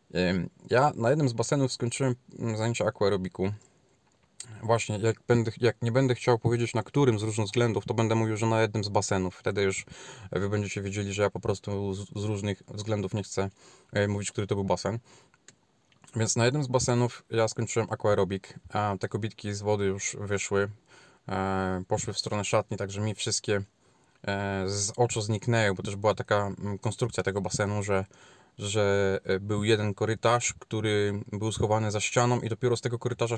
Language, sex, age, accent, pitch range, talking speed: Polish, male, 20-39, native, 100-120 Hz, 170 wpm